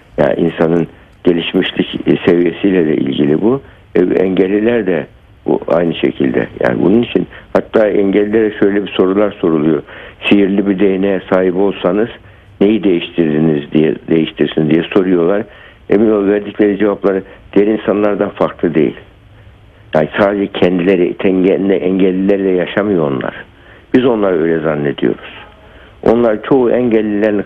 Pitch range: 95-110 Hz